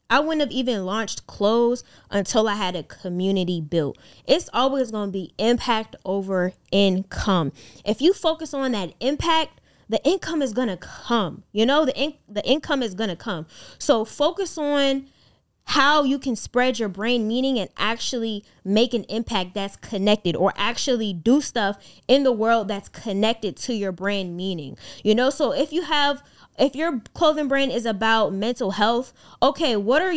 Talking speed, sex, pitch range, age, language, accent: 175 wpm, female, 200-270 Hz, 10-29, English, American